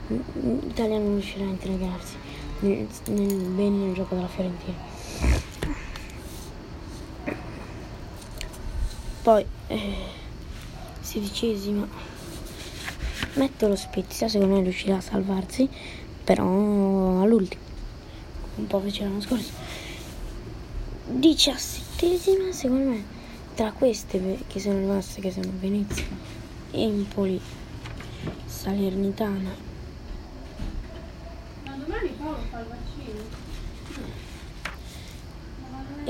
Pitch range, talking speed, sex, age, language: 190-230 Hz, 75 wpm, female, 20-39, Italian